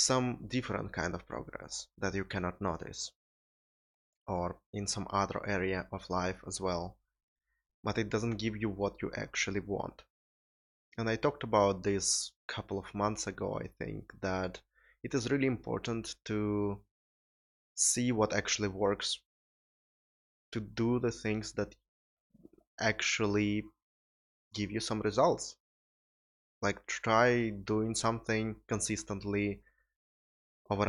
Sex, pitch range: male, 95-115 Hz